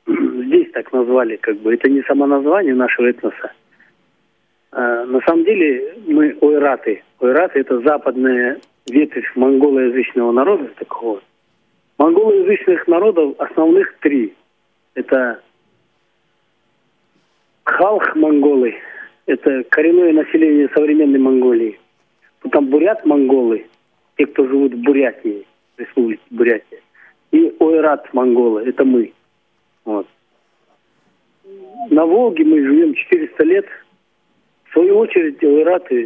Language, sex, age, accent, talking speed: Russian, male, 40-59, native, 105 wpm